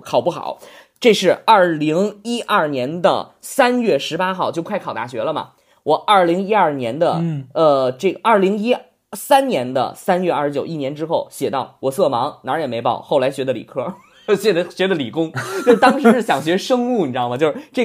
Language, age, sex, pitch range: Chinese, 20-39, male, 165-240 Hz